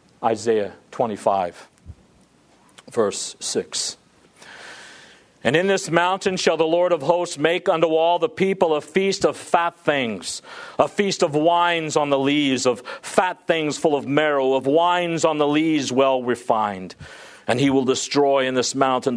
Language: English